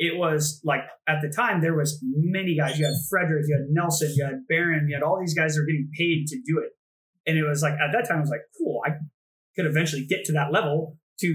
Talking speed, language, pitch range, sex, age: 260 wpm, English, 150-170 Hz, male, 20-39